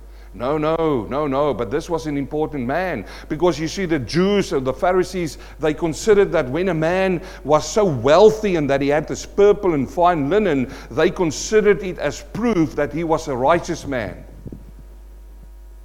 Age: 60-79